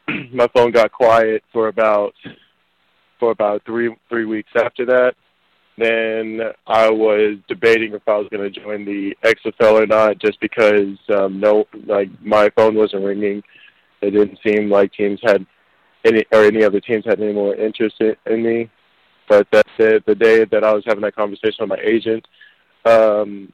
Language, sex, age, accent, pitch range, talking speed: English, male, 20-39, American, 105-115 Hz, 175 wpm